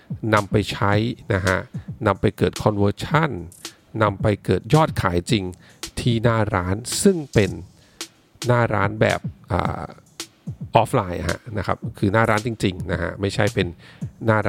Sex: male